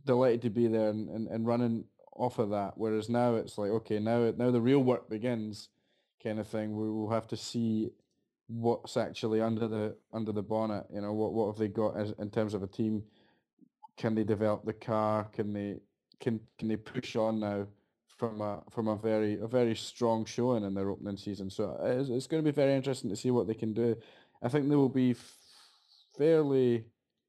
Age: 20-39